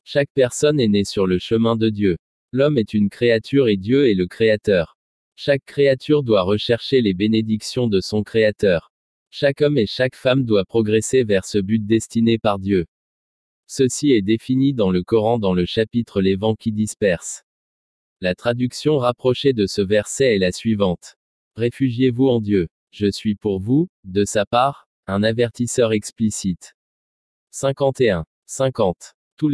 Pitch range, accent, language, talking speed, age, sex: 100-125 Hz, French, French, 160 wpm, 20-39, male